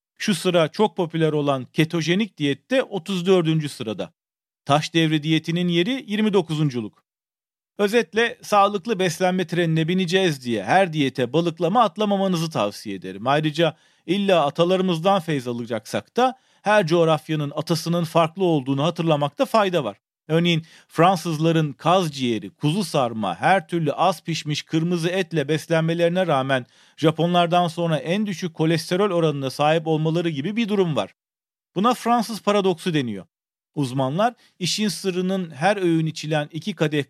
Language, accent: Turkish, native